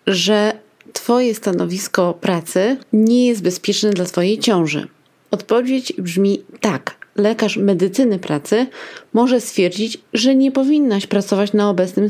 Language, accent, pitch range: Polish, native, 185-230 Hz